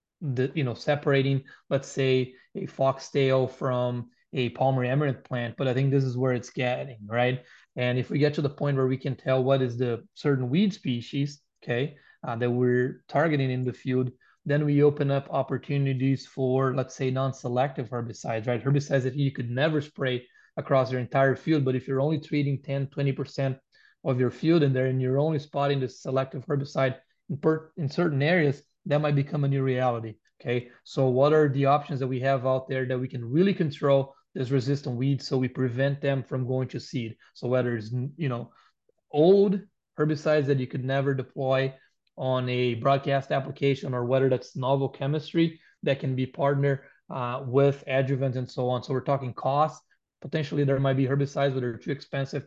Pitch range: 130-145 Hz